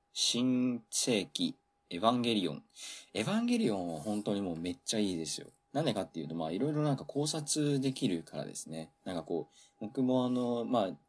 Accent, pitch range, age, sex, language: native, 80-120 Hz, 20-39, male, Japanese